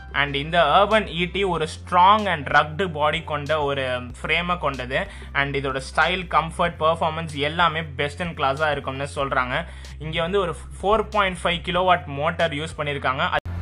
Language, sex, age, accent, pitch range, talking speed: Tamil, male, 20-39, native, 140-175 Hz, 155 wpm